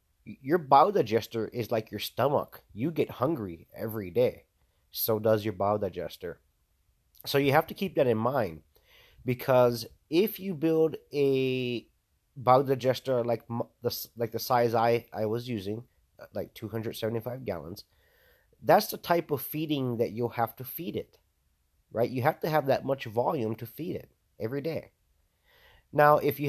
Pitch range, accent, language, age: 110-135 Hz, American, English, 30-49